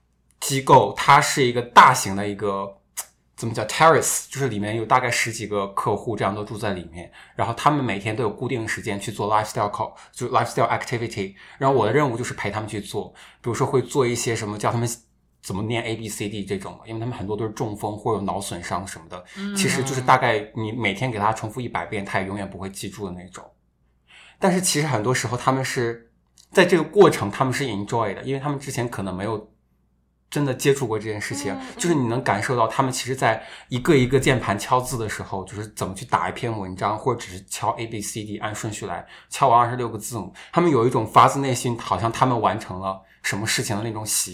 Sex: male